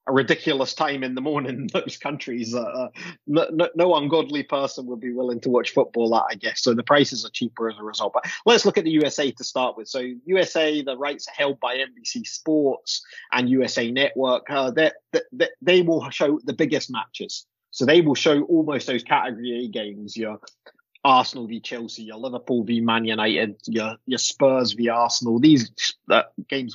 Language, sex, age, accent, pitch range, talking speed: English, male, 30-49, British, 120-160 Hz, 195 wpm